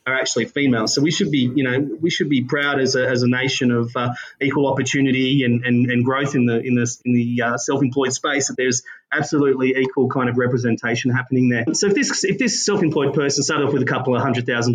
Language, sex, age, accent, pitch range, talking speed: English, male, 30-49, Australian, 120-140 Hz, 250 wpm